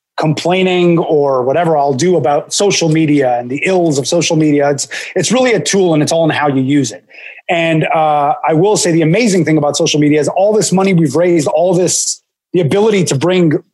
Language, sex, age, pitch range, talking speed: English, male, 30-49, 145-175 Hz, 220 wpm